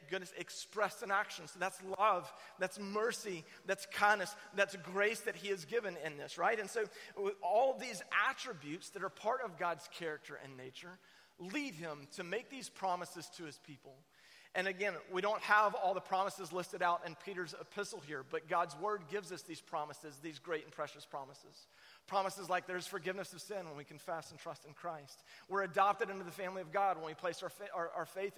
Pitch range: 165-205 Hz